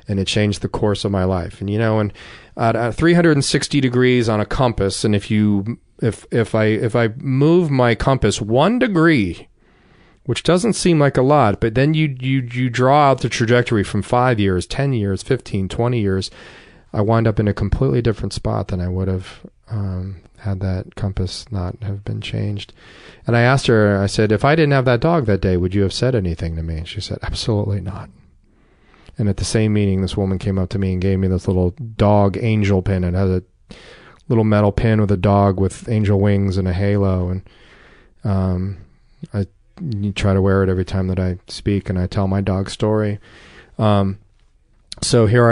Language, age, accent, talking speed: English, 30-49, American, 205 wpm